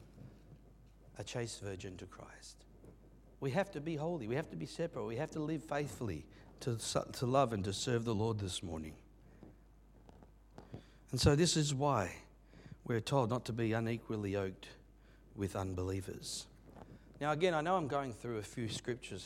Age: 60-79